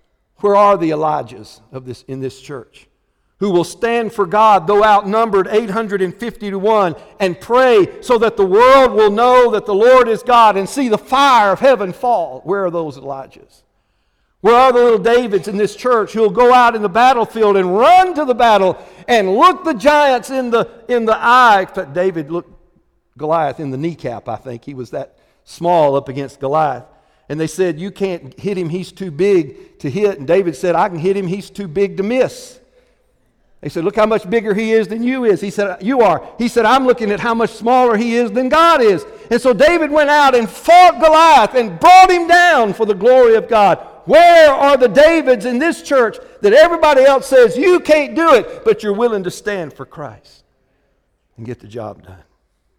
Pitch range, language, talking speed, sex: 180-255 Hz, English, 205 wpm, male